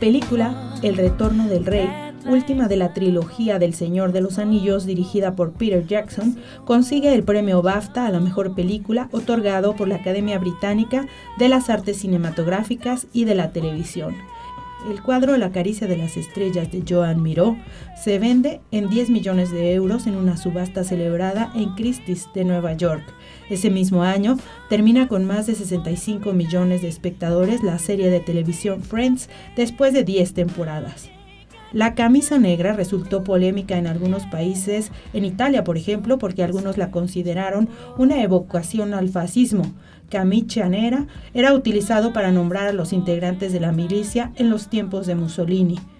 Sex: female